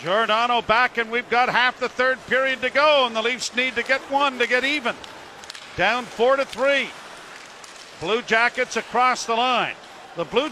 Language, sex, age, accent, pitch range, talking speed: English, male, 50-69, American, 220-260 Hz, 175 wpm